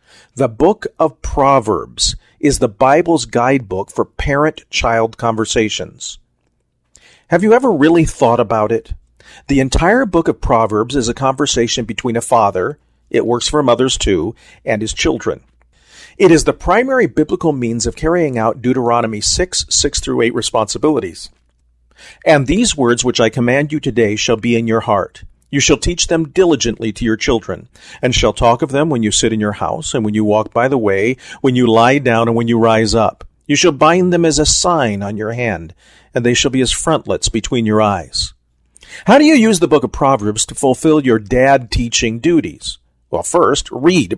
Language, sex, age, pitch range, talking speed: English, male, 40-59, 110-145 Hz, 180 wpm